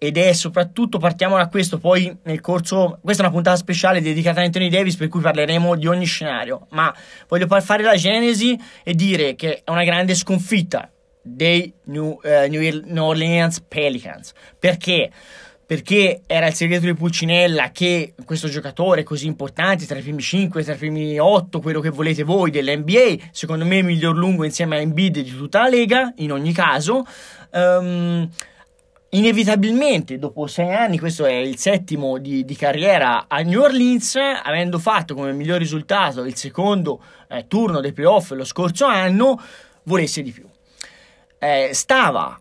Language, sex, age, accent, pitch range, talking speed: Italian, male, 20-39, native, 150-190 Hz, 160 wpm